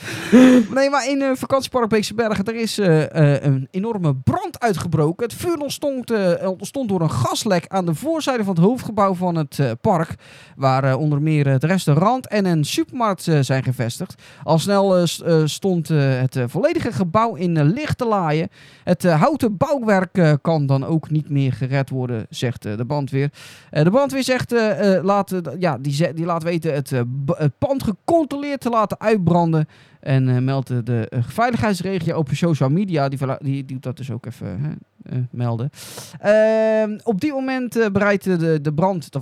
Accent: Dutch